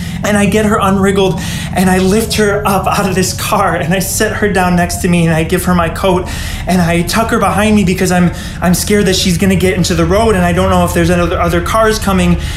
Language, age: English, 20-39